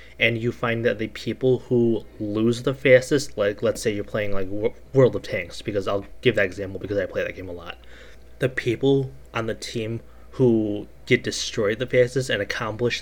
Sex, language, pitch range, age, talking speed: male, English, 105-120 Hz, 20-39, 200 wpm